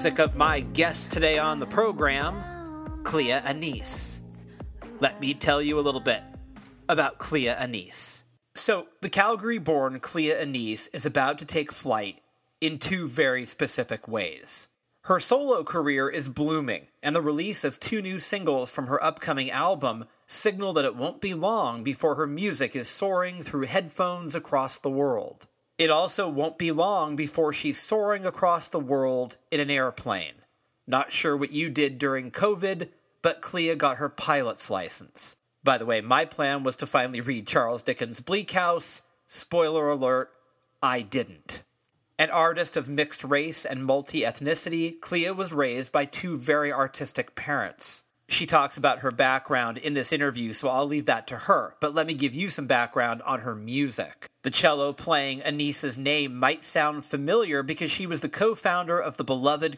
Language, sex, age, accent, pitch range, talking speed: English, male, 30-49, American, 135-165 Hz, 165 wpm